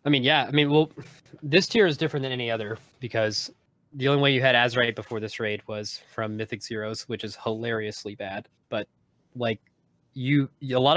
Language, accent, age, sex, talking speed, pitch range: English, American, 20-39, male, 195 wpm, 110-135 Hz